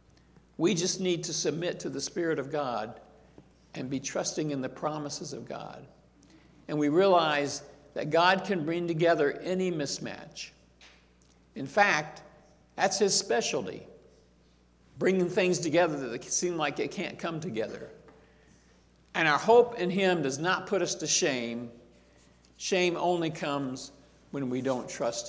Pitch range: 110-180 Hz